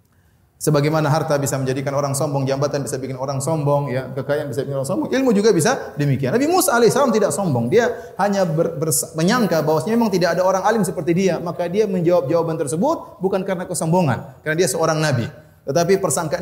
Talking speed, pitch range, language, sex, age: 195 wpm, 145-205 Hz, Indonesian, male, 30-49